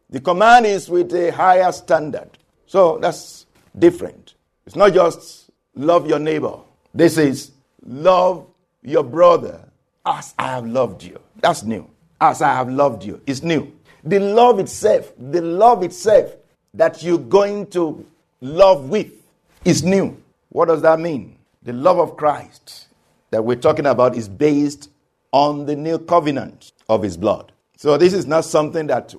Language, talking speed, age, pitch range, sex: English, 155 wpm, 50-69, 140-185 Hz, male